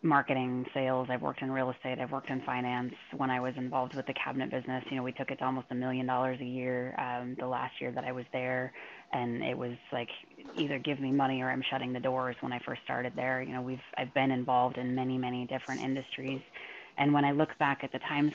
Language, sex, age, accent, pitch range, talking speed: English, female, 20-39, American, 125-135 Hz, 250 wpm